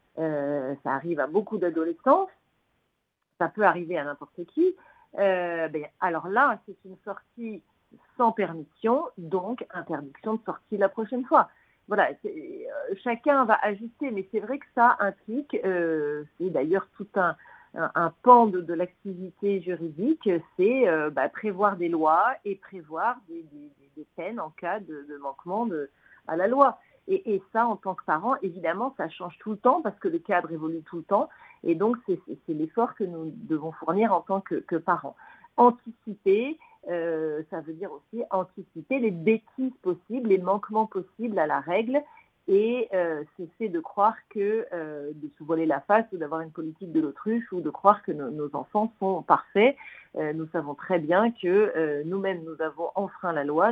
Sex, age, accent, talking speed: female, 50-69, French, 185 wpm